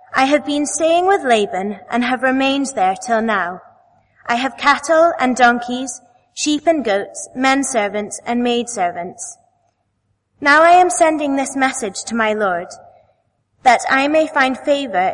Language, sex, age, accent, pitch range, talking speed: English, female, 20-39, British, 235-290 Hz, 155 wpm